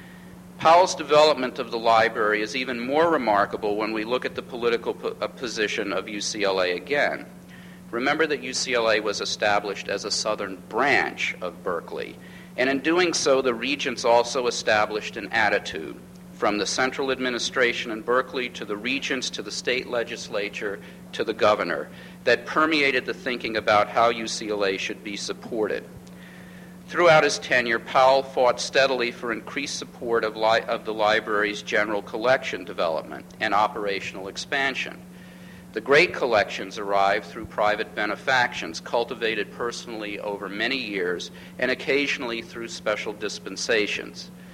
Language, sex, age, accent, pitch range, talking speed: English, male, 50-69, American, 110-155 Hz, 135 wpm